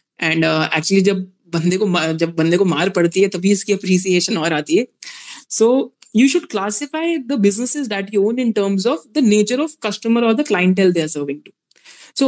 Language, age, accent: Hindi, 20-39, native